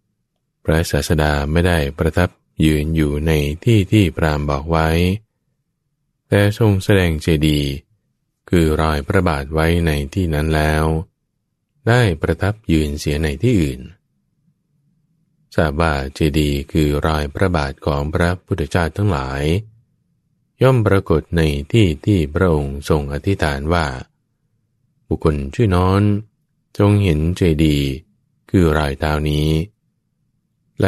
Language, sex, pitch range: English, male, 75-115 Hz